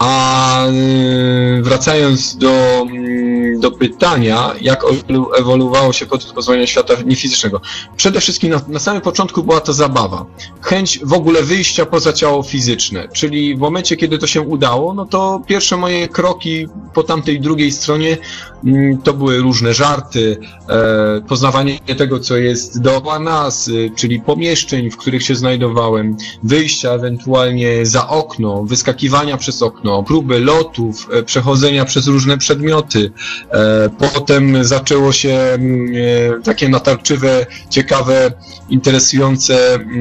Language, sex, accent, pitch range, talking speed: Polish, male, native, 125-150 Hz, 120 wpm